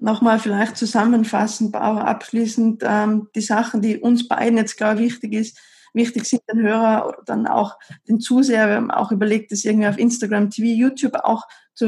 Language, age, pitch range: German, 20-39, 215-235 Hz